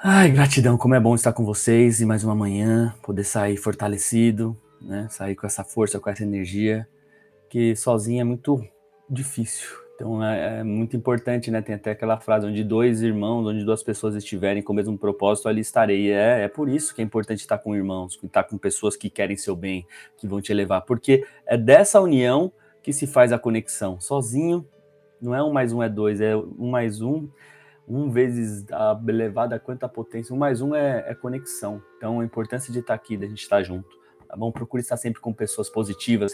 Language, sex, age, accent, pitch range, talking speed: Portuguese, male, 20-39, Brazilian, 105-125 Hz, 205 wpm